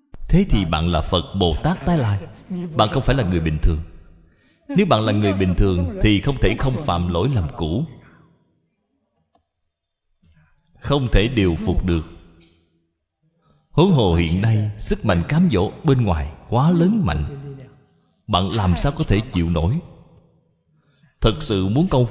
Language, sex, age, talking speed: Vietnamese, male, 20-39, 160 wpm